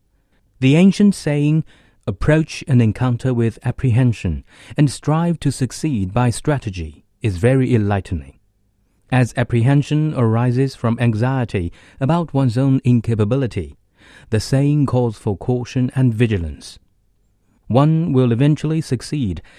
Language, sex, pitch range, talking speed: English, male, 100-135 Hz, 115 wpm